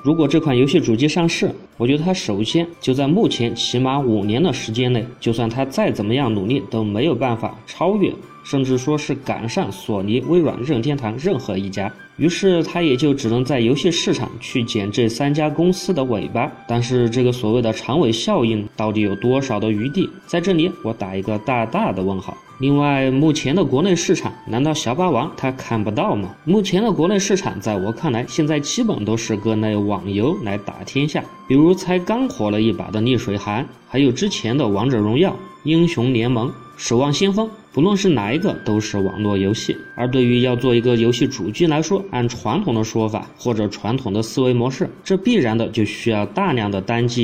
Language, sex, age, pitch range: Chinese, male, 20-39, 110-165 Hz